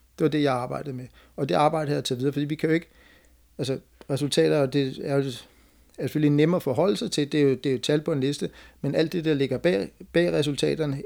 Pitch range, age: 130-150 Hz, 60-79